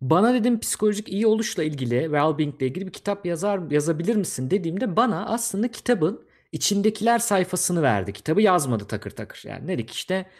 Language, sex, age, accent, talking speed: Turkish, male, 50-69, native, 160 wpm